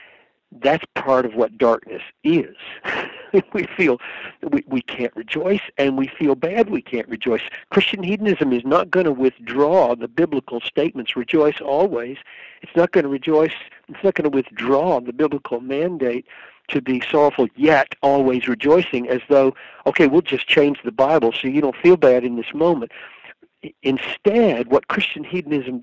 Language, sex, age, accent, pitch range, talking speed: English, male, 60-79, American, 125-175 Hz, 165 wpm